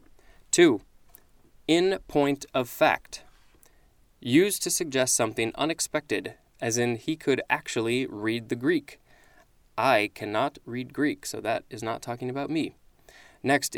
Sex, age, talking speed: male, 20-39, 130 wpm